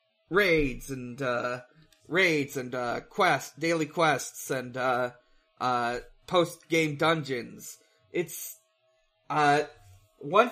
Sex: male